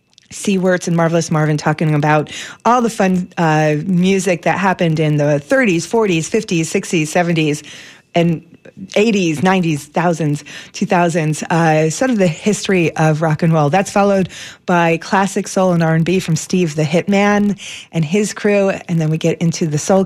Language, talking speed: English, 165 wpm